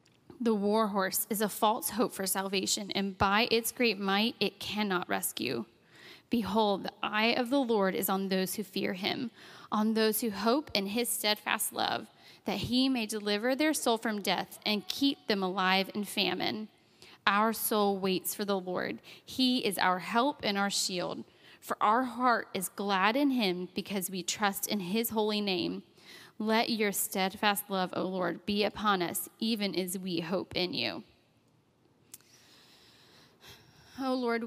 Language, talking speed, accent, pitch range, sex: English, 165 wpm, American, 195-235 Hz, female